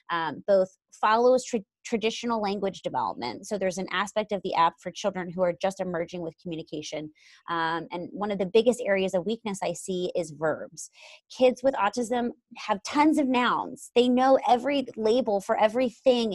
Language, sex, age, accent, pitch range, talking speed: English, female, 20-39, American, 175-220 Hz, 175 wpm